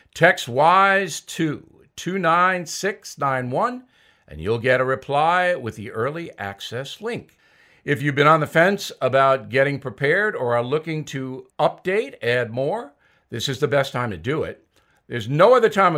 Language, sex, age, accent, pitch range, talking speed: English, male, 50-69, American, 135-190 Hz, 160 wpm